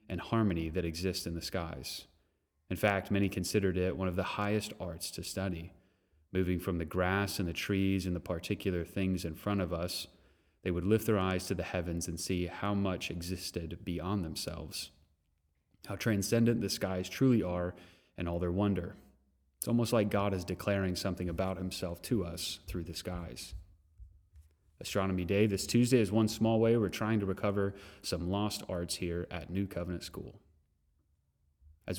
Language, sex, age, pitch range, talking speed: English, male, 30-49, 85-105 Hz, 175 wpm